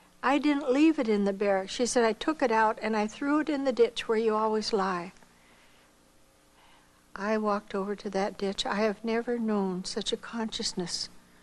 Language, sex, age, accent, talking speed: English, female, 60-79, American, 195 wpm